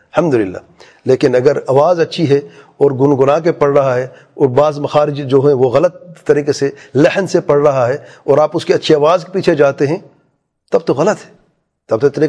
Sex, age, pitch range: male, 40-59, 120-170 Hz